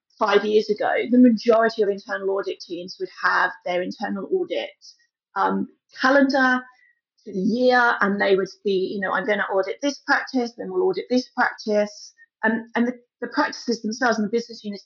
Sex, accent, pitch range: female, British, 205-270 Hz